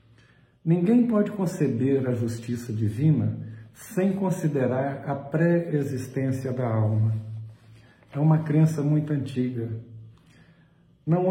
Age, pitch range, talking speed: 60-79, 115-155 Hz, 95 wpm